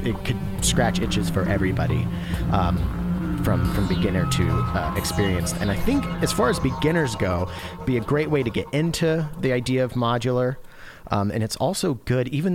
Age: 30-49